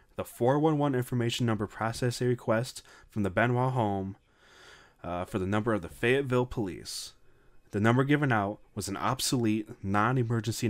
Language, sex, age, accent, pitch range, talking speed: English, male, 20-39, American, 95-115 Hz, 150 wpm